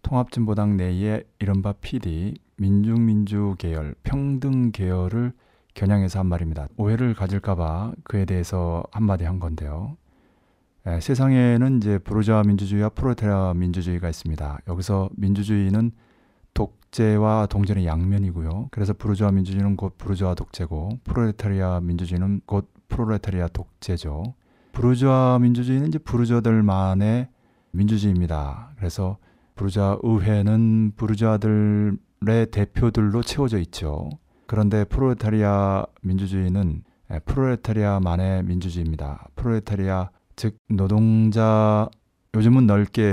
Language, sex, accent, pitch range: Korean, male, native, 95-110 Hz